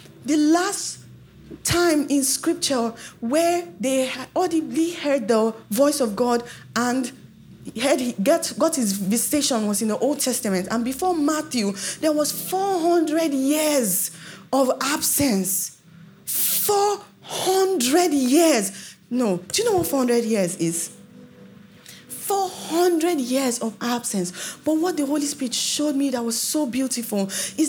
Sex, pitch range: female, 215-300 Hz